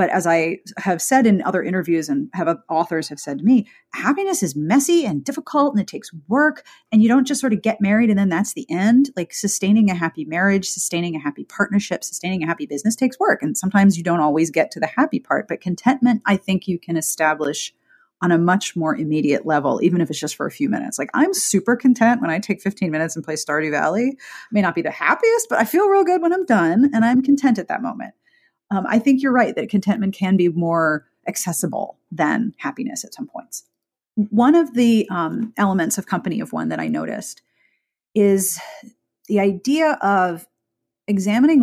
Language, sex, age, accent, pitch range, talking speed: English, female, 30-49, American, 170-245 Hz, 215 wpm